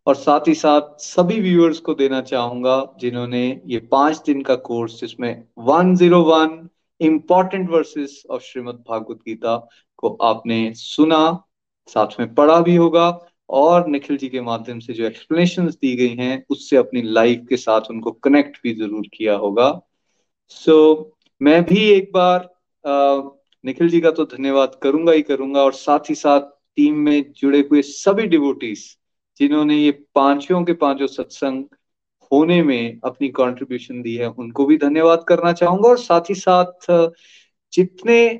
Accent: native